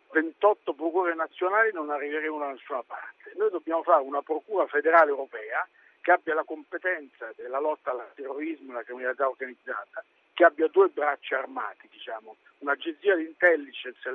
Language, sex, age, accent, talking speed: Italian, male, 50-69, native, 155 wpm